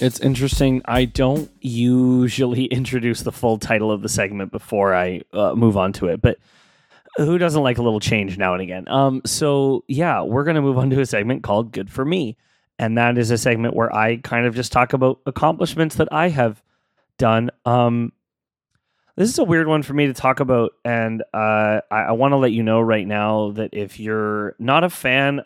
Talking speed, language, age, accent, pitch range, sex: 205 wpm, English, 30-49, American, 110-135 Hz, male